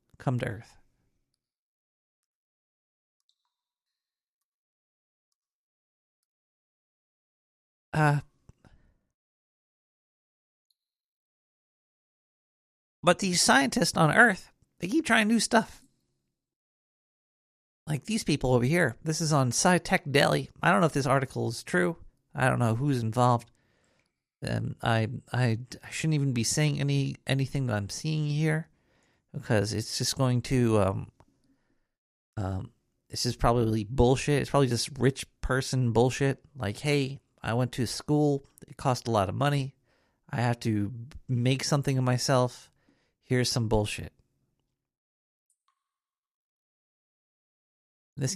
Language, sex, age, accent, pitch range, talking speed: English, male, 50-69, American, 120-155 Hz, 115 wpm